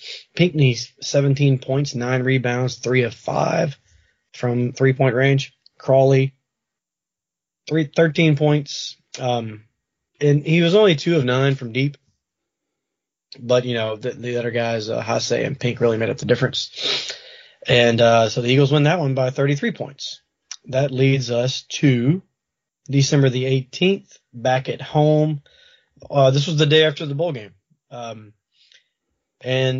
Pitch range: 125-150 Hz